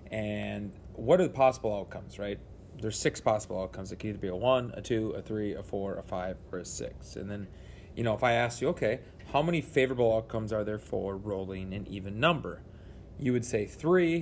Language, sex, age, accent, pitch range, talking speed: English, male, 30-49, American, 100-115 Hz, 220 wpm